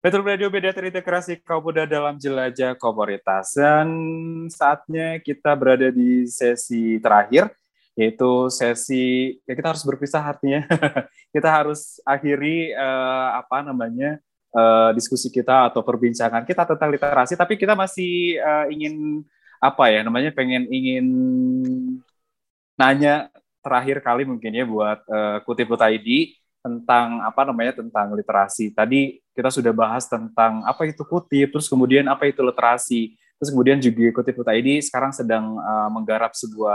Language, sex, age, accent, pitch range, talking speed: Indonesian, male, 20-39, native, 115-150 Hz, 135 wpm